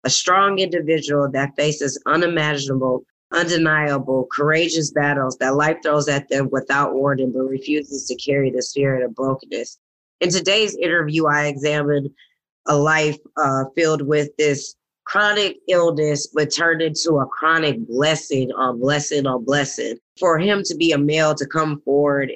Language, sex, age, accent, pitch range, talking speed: English, female, 20-39, American, 140-175 Hz, 150 wpm